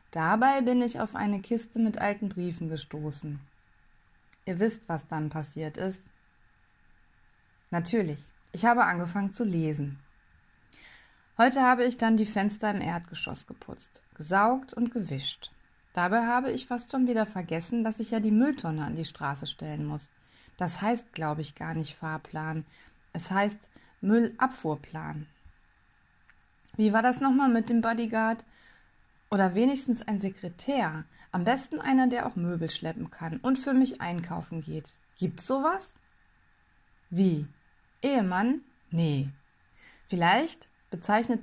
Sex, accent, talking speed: female, German, 135 wpm